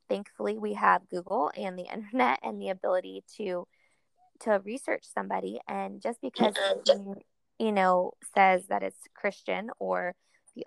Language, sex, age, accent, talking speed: English, female, 20-39, American, 145 wpm